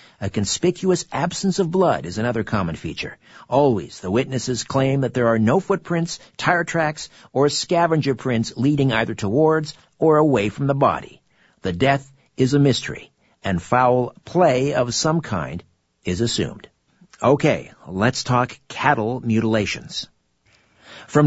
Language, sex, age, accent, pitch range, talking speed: English, male, 50-69, American, 115-155 Hz, 140 wpm